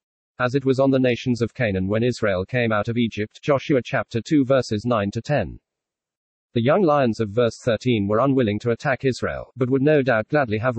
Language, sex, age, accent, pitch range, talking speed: English, male, 40-59, British, 110-135 Hz, 210 wpm